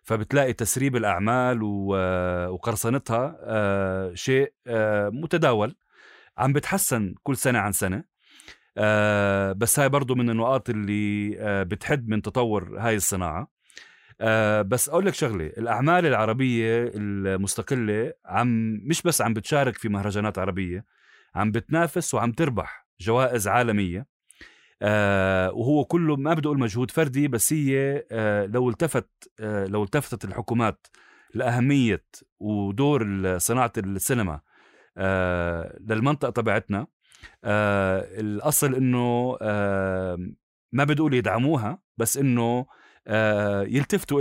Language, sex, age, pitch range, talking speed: Arabic, male, 30-49, 100-135 Hz, 105 wpm